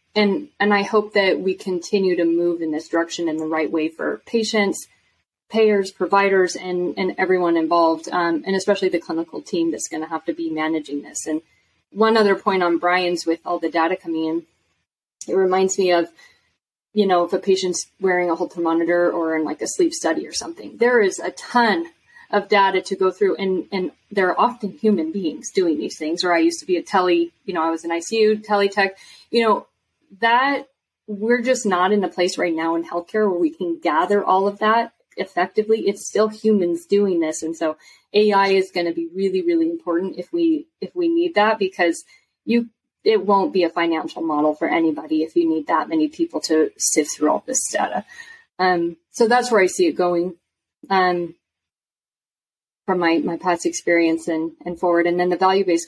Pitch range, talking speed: 170-215 Hz, 205 wpm